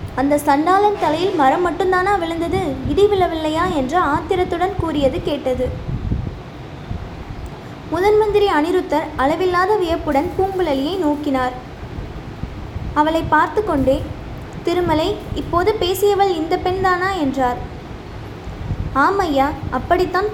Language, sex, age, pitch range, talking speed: Tamil, female, 20-39, 300-370 Hz, 85 wpm